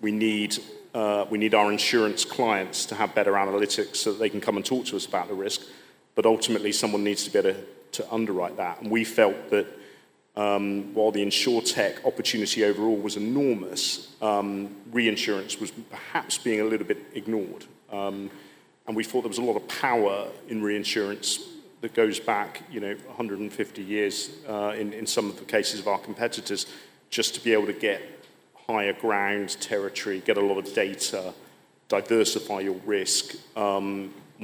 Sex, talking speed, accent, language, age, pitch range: male, 180 wpm, British, English, 40-59, 100-110 Hz